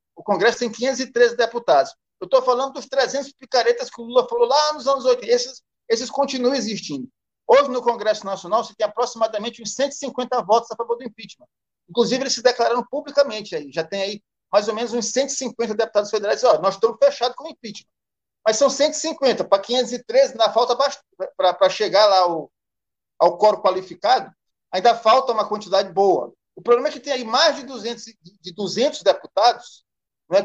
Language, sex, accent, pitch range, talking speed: Portuguese, male, Brazilian, 210-275 Hz, 185 wpm